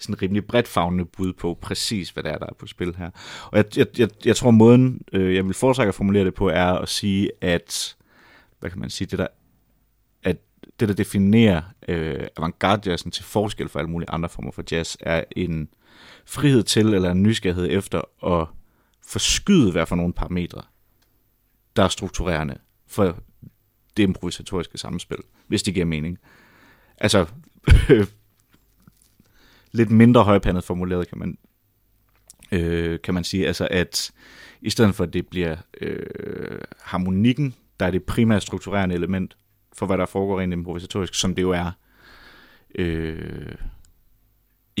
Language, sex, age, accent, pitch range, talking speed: Danish, male, 30-49, native, 90-110 Hz, 155 wpm